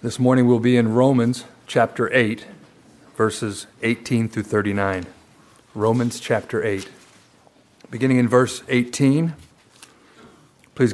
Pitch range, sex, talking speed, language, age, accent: 110-135 Hz, male, 110 wpm, English, 40-59, American